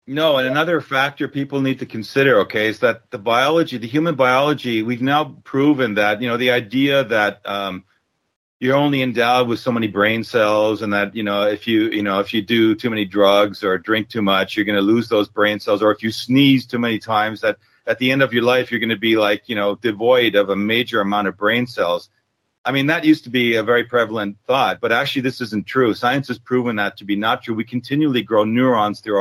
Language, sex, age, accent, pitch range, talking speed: English, male, 40-59, American, 110-135 Hz, 240 wpm